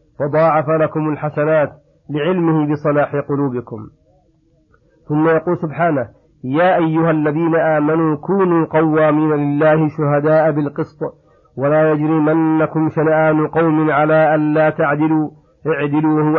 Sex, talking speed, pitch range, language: male, 100 wpm, 150-160 Hz, Arabic